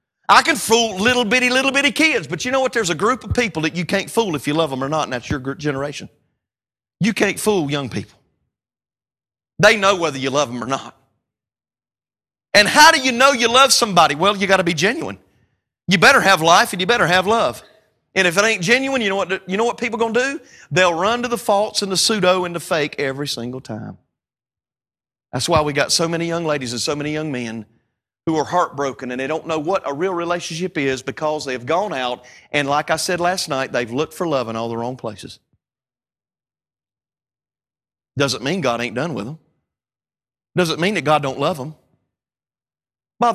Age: 40-59